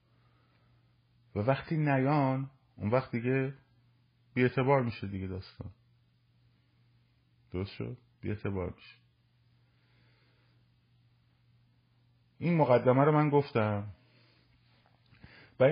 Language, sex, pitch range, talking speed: Persian, male, 105-125 Hz, 75 wpm